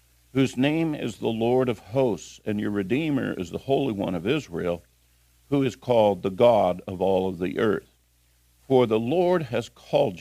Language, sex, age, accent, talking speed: English, male, 50-69, American, 180 wpm